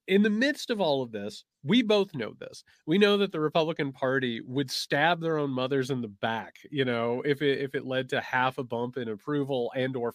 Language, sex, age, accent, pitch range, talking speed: English, male, 30-49, American, 130-200 Hz, 230 wpm